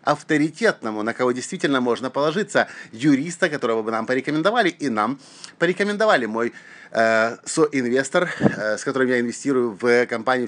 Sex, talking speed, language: male, 135 wpm, Russian